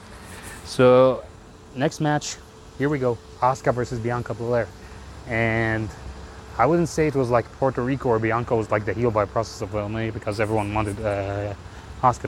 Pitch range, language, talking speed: 100-125 Hz, English, 165 wpm